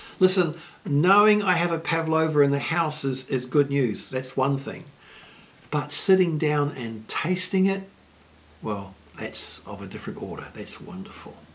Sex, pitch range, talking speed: male, 150-215 Hz, 155 wpm